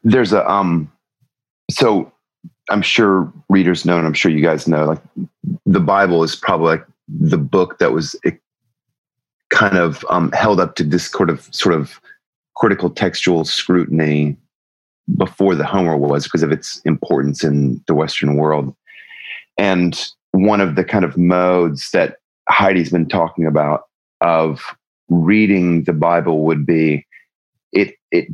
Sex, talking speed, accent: male, 145 wpm, American